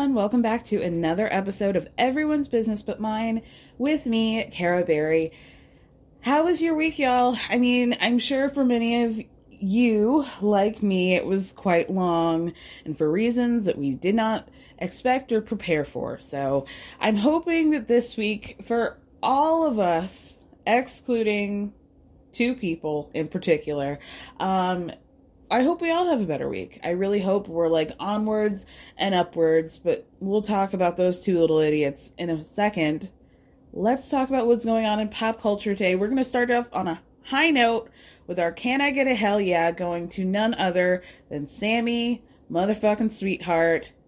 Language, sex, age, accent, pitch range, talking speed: English, female, 20-39, American, 180-245 Hz, 165 wpm